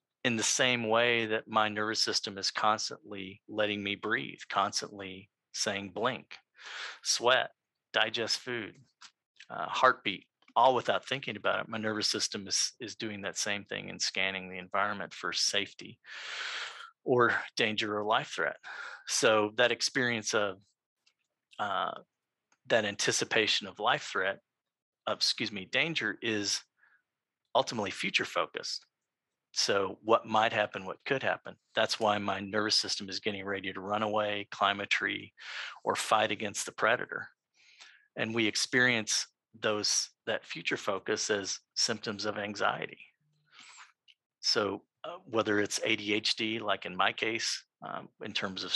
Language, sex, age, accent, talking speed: English, male, 40-59, American, 140 wpm